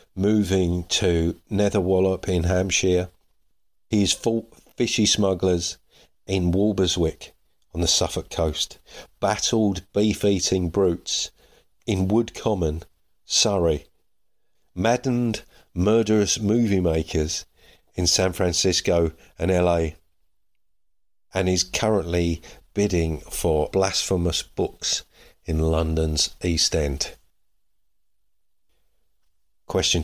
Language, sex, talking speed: English, male, 85 wpm